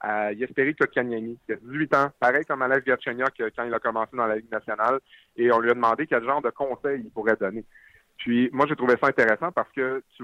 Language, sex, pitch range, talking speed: French, male, 110-140 Hz, 230 wpm